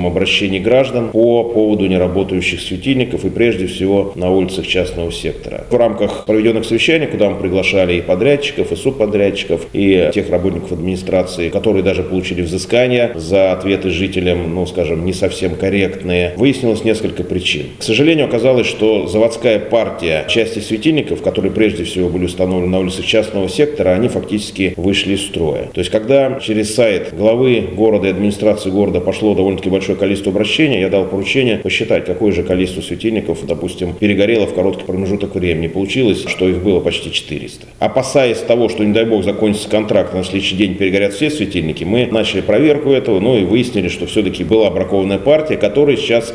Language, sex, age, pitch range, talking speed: Russian, male, 30-49, 95-115 Hz, 165 wpm